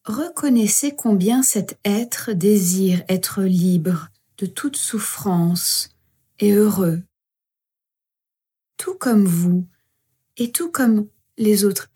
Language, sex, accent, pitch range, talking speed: French, female, French, 175-205 Hz, 100 wpm